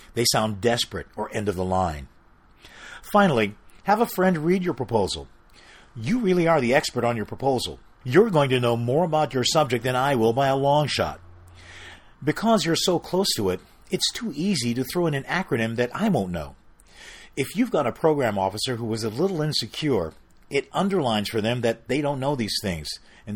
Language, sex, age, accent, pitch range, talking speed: English, male, 50-69, American, 110-155 Hz, 200 wpm